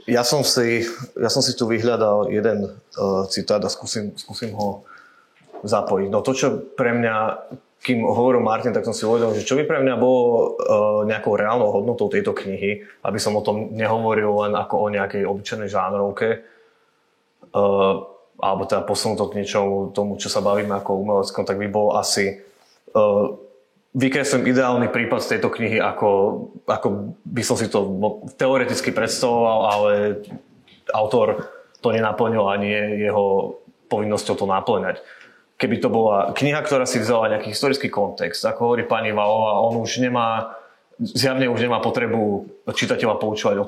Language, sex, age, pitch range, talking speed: Slovak, male, 20-39, 105-120 Hz, 160 wpm